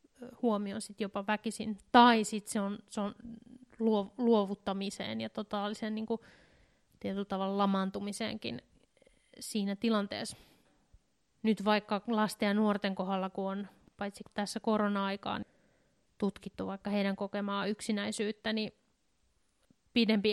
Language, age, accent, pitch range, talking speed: Finnish, 30-49, native, 200-220 Hz, 105 wpm